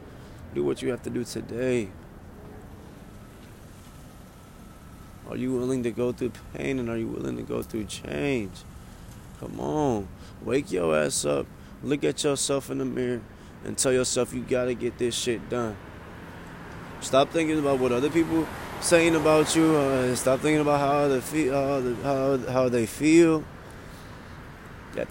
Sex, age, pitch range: male, 20-39, 100-145 Hz